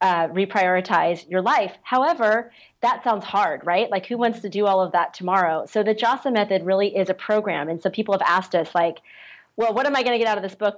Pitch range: 185-215 Hz